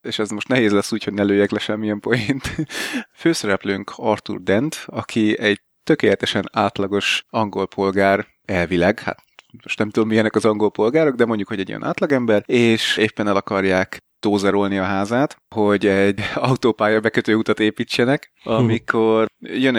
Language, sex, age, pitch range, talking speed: Hungarian, male, 30-49, 105-125 Hz, 155 wpm